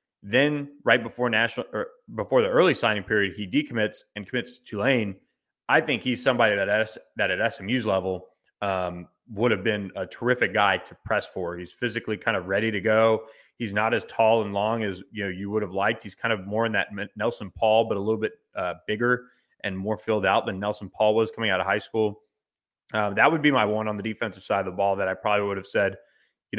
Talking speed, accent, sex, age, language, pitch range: 230 wpm, American, male, 20-39, English, 100-115 Hz